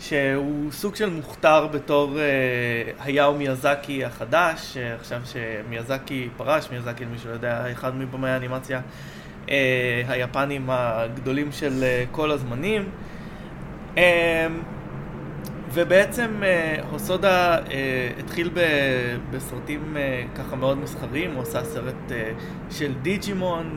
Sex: male